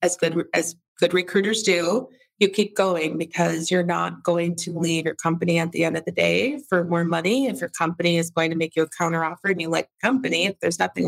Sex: female